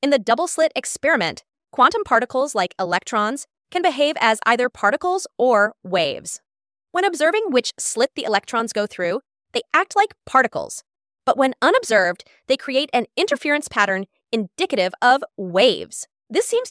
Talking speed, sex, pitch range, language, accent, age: 145 wpm, female, 210-300 Hz, English, American, 20-39